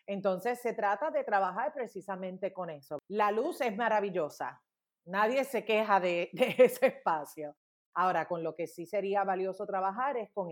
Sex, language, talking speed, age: female, Spanish, 165 wpm, 40-59